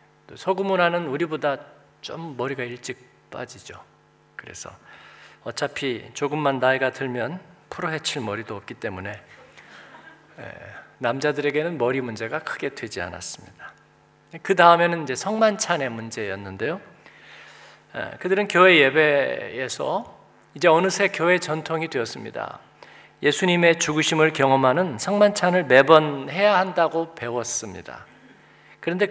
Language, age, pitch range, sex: Korean, 40-59, 140-180 Hz, male